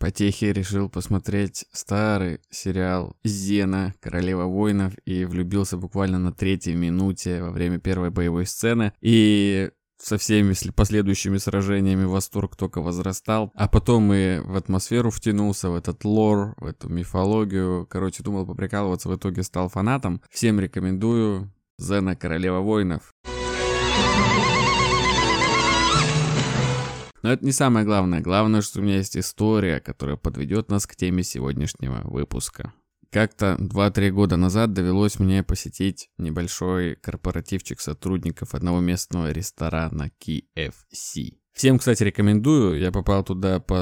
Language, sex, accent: Russian, male, native